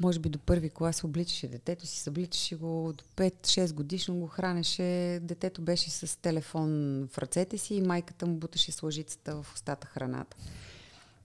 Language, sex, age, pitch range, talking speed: Bulgarian, female, 30-49, 145-175 Hz, 165 wpm